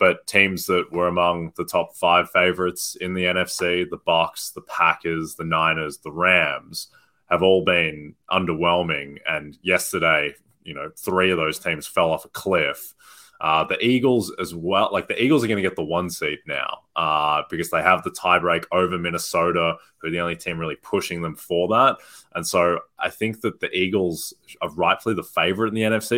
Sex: male